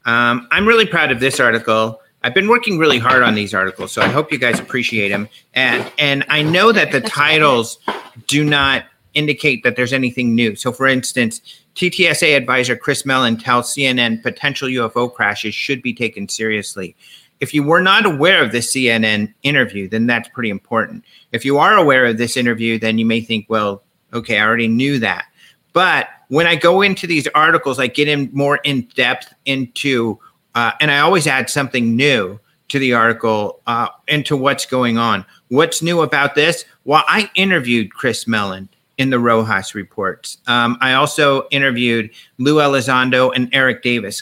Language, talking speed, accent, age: English, 180 wpm, American, 40-59